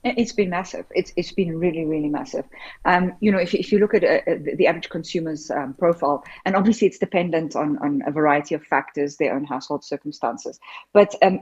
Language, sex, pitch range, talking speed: English, female, 150-195 Hz, 210 wpm